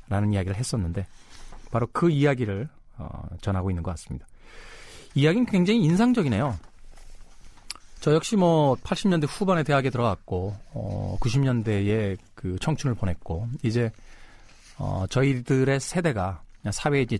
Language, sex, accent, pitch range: Korean, male, native, 100-135 Hz